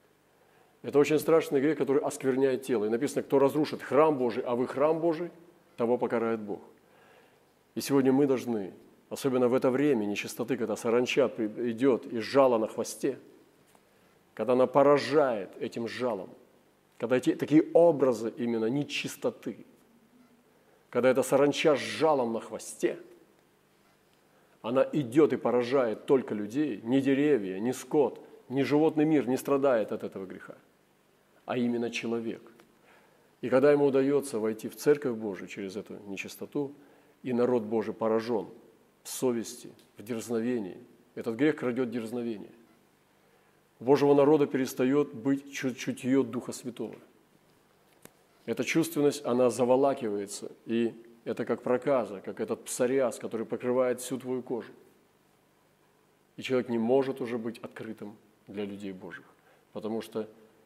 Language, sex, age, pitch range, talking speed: Russian, male, 40-59, 115-140 Hz, 135 wpm